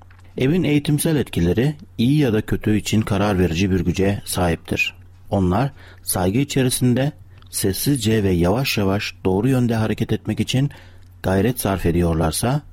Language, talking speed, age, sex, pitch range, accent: Turkish, 130 wpm, 60-79, male, 90-125 Hz, native